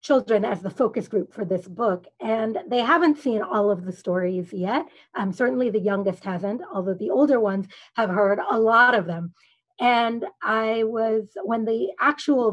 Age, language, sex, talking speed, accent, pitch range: 30-49, English, female, 180 wpm, American, 205-285 Hz